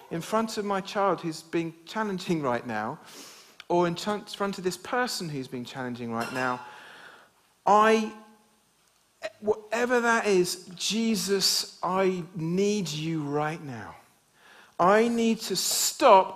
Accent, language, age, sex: British, English, 50-69, male